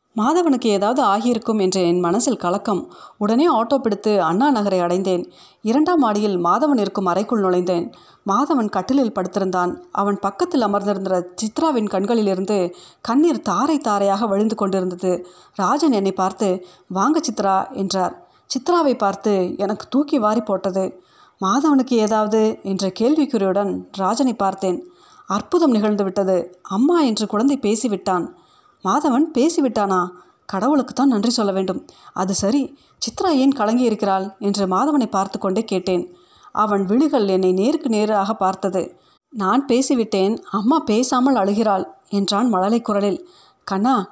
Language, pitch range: Tamil, 190-270 Hz